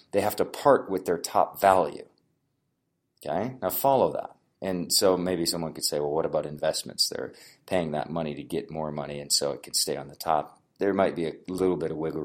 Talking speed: 225 wpm